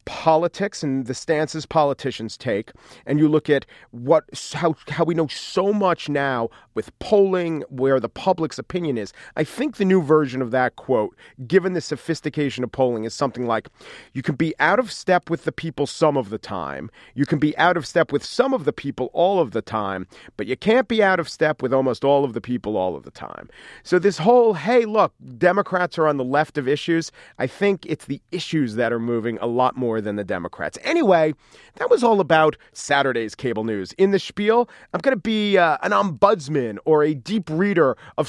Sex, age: male, 40-59